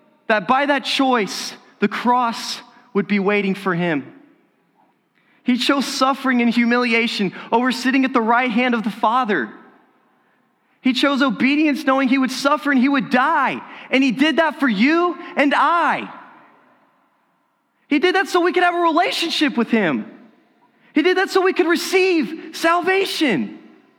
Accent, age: American, 20-39